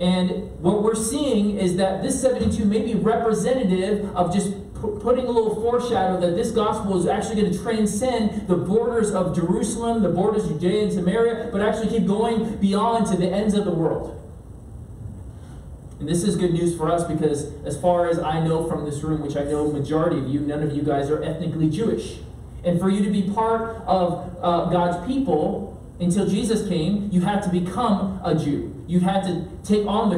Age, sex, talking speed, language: 30-49, male, 200 wpm, English